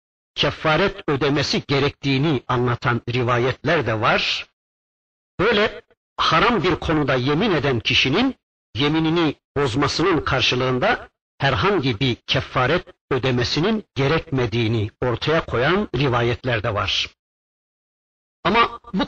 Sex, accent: male, native